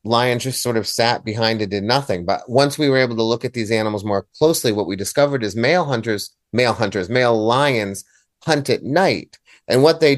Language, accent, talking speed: English, American, 225 wpm